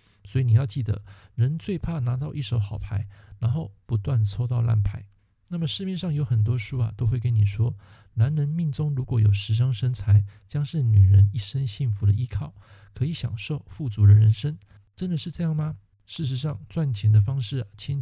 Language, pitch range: Chinese, 105-135 Hz